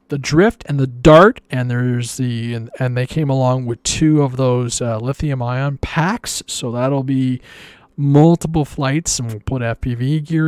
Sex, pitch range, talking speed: male, 125-155 Hz, 180 wpm